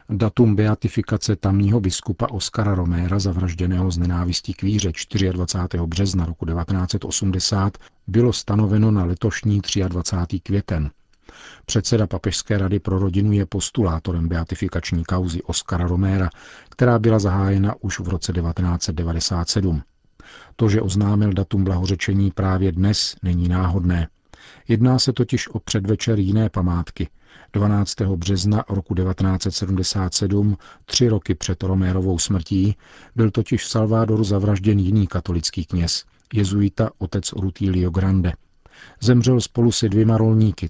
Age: 40-59